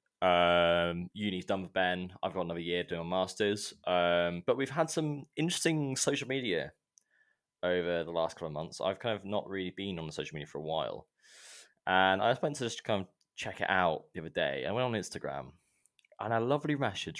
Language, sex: English, male